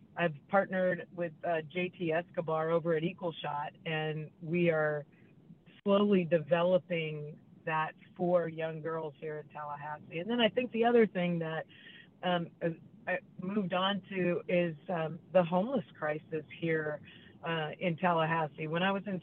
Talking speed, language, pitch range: 150 wpm, English, 160-190 Hz